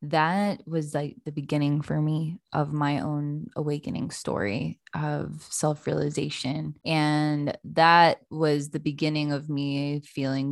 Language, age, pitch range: English, 20-39, 145-165 Hz